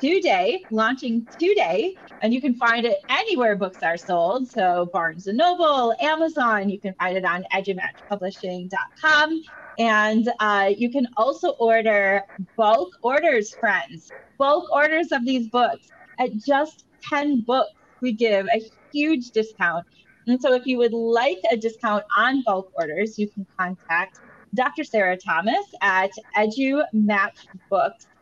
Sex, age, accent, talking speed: female, 30-49, American, 135 wpm